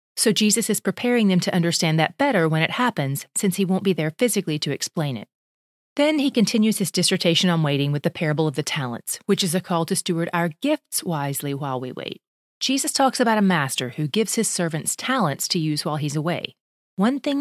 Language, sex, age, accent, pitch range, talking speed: English, female, 30-49, American, 160-215 Hz, 215 wpm